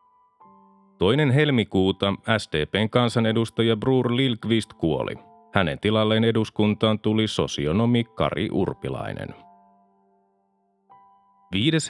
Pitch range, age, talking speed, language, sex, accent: 100-120 Hz, 30-49, 75 wpm, Finnish, male, native